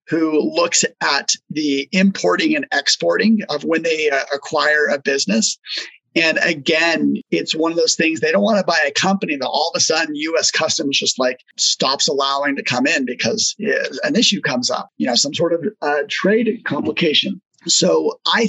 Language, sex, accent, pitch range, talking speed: English, male, American, 150-205 Hz, 185 wpm